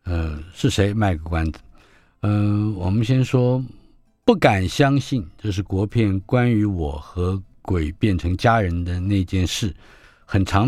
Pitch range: 90-115 Hz